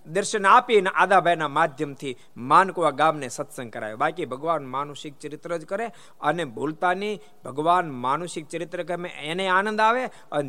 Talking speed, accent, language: 135 wpm, native, Gujarati